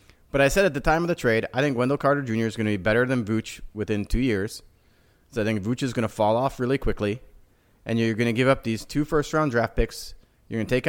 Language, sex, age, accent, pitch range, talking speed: English, male, 30-49, American, 115-145 Hz, 275 wpm